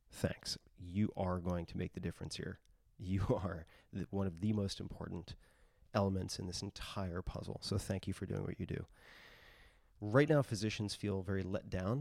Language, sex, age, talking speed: English, male, 30-49, 180 wpm